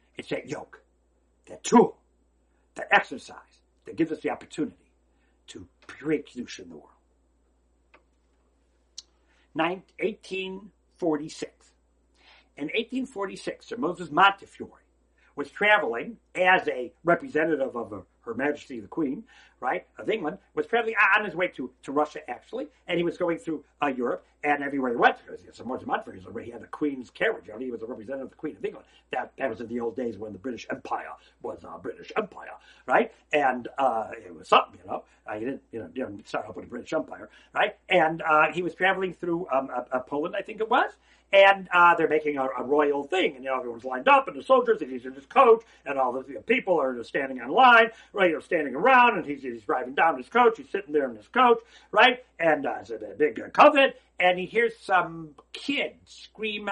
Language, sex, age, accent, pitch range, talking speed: English, male, 60-79, American, 120-200 Hz, 200 wpm